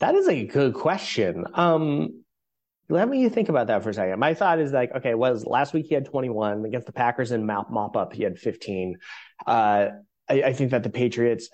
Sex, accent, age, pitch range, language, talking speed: male, American, 30-49, 110-145 Hz, English, 220 wpm